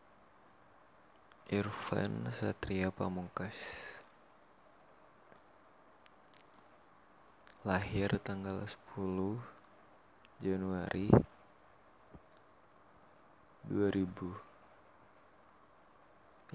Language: Indonesian